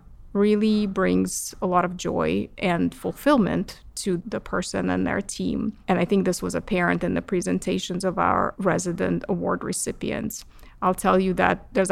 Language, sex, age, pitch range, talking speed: English, female, 30-49, 180-205 Hz, 165 wpm